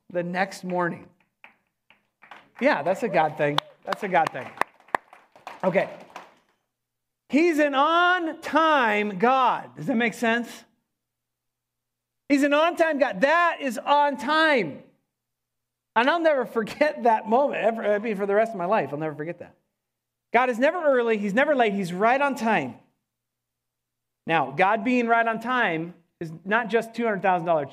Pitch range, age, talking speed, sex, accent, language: 175-250 Hz, 40-59, 145 wpm, male, American, English